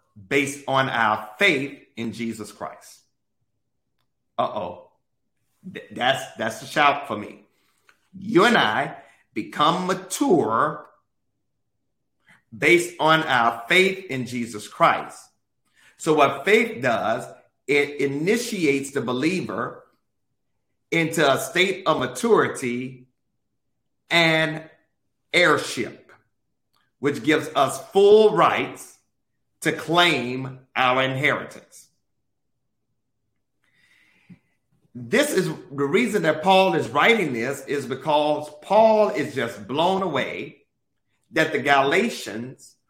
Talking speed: 95 wpm